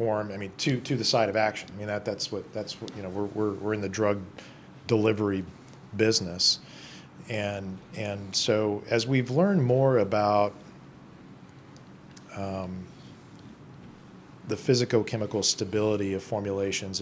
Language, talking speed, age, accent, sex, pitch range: English, 140 wpm, 40-59, American, male, 95-110 Hz